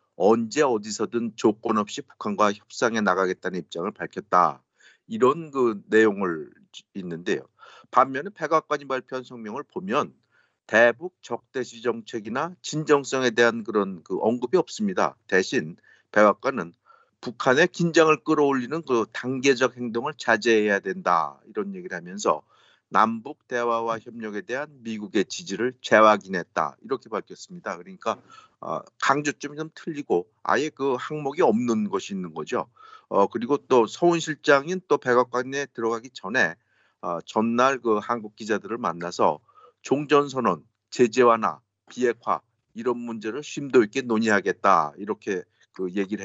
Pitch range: 115-150 Hz